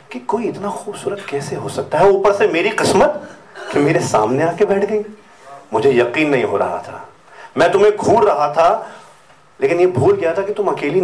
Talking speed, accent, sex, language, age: 195 wpm, native, male, Hindi, 40-59